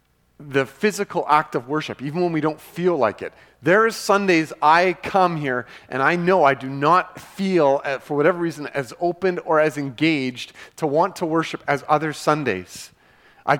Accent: American